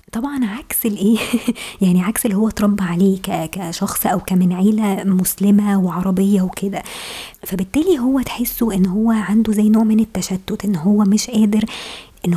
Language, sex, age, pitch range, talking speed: Arabic, male, 20-39, 195-220 Hz, 150 wpm